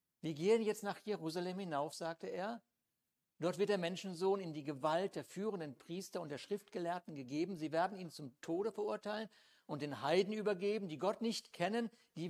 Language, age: German, 60-79